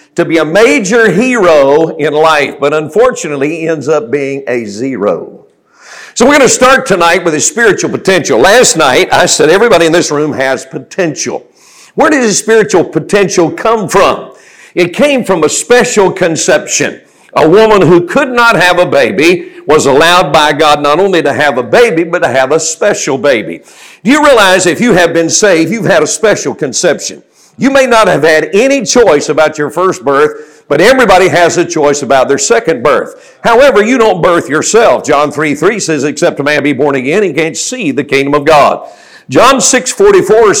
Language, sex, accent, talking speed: English, male, American, 190 wpm